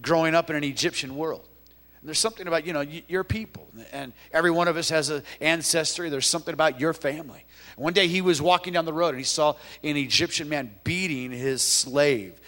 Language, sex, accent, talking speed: English, male, American, 205 wpm